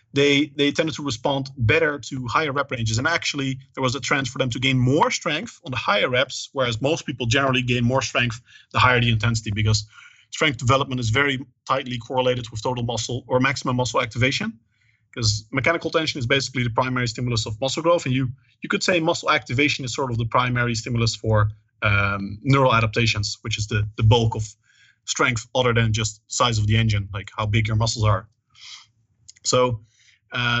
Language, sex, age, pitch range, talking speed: English, male, 30-49, 115-140 Hz, 195 wpm